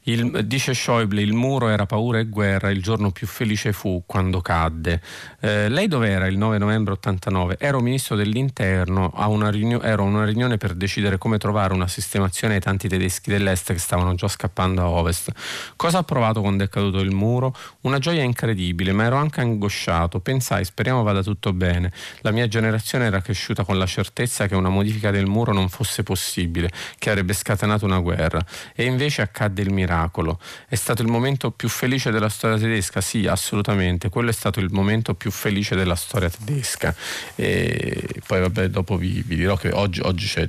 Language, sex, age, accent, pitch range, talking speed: Italian, male, 30-49, native, 90-110 Hz, 180 wpm